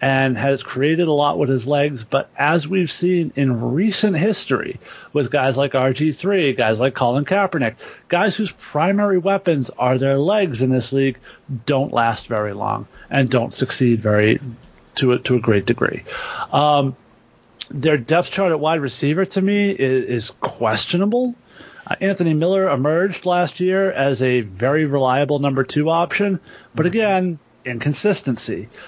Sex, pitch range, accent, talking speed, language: male, 130-180 Hz, American, 155 wpm, English